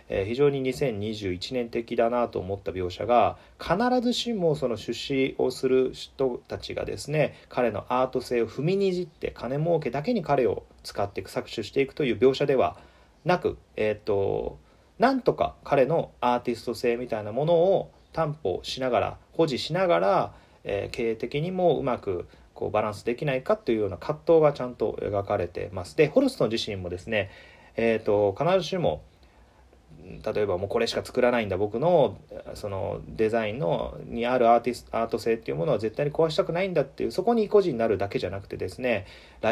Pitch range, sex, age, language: 105-165 Hz, male, 30-49, Japanese